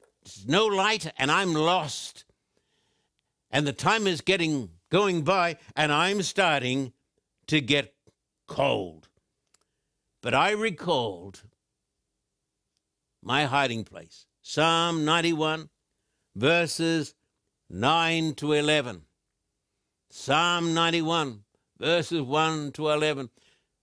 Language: English